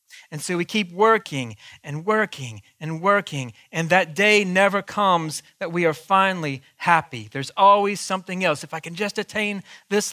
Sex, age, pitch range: male, 40-59, 135-210 Hz